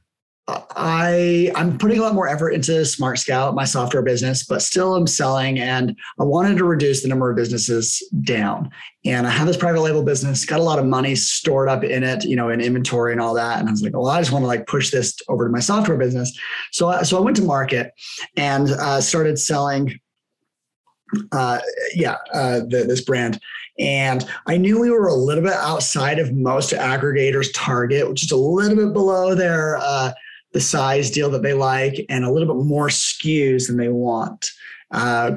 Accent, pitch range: American, 125-160 Hz